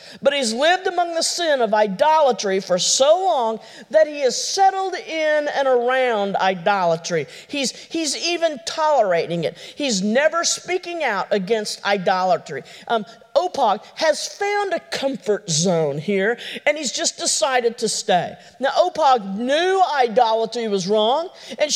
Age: 50-69